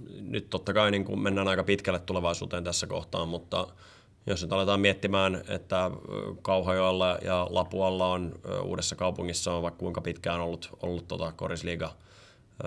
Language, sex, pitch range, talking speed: Finnish, male, 85-95 Hz, 145 wpm